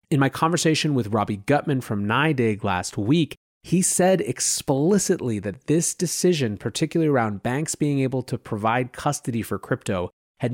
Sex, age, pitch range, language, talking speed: male, 30-49, 110-155 Hz, English, 155 wpm